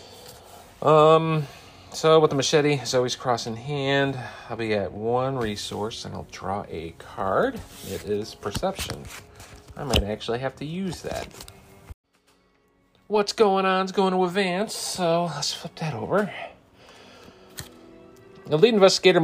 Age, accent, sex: 40-59, American, male